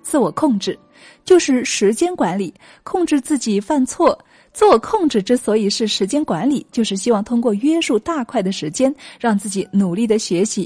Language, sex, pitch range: Chinese, female, 205-285 Hz